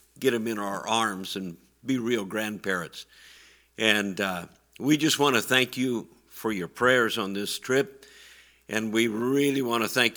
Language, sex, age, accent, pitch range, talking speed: English, male, 50-69, American, 100-125 Hz, 170 wpm